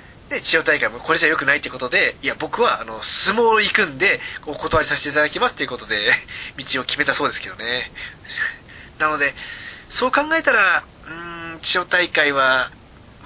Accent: native